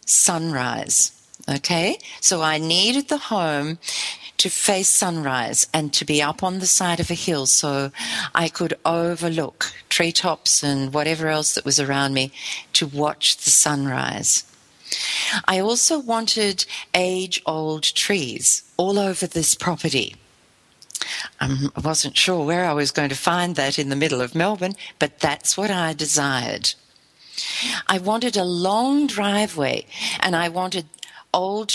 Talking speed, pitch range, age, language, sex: 140 wpm, 150-200 Hz, 50-69, English, female